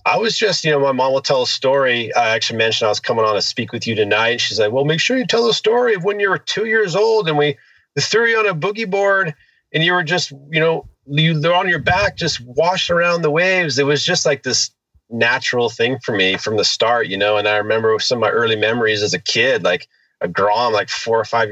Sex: male